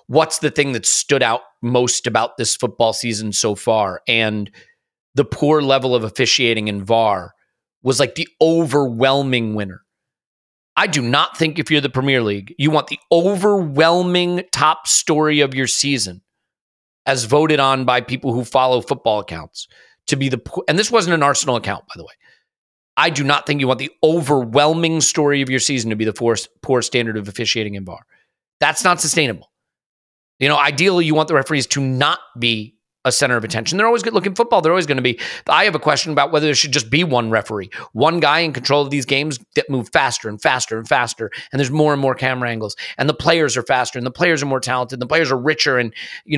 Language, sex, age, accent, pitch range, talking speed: English, male, 30-49, American, 125-155 Hz, 215 wpm